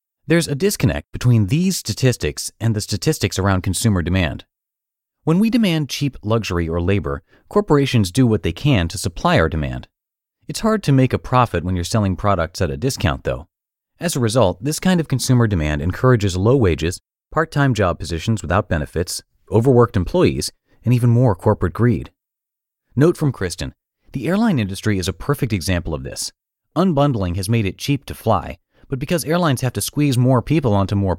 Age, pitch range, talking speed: 30-49, 95-145 Hz, 180 wpm